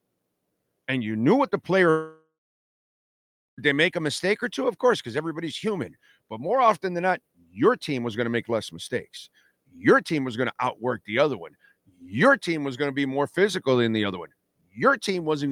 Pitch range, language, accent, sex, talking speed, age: 105-150 Hz, English, American, male, 210 wpm, 50-69